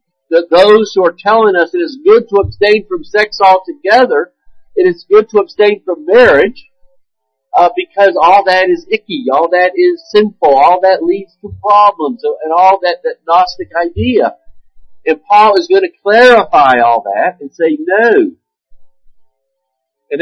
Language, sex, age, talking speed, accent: English, male, 50-69, 155 wpm, American